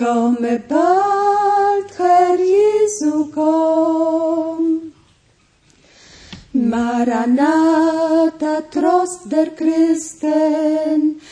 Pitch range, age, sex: 245-355 Hz, 30-49, female